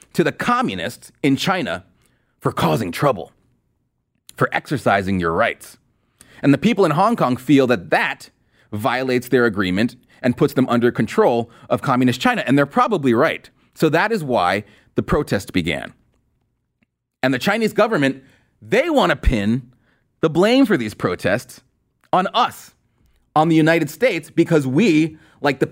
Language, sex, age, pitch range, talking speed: English, male, 30-49, 125-175 Hz, 155 wpm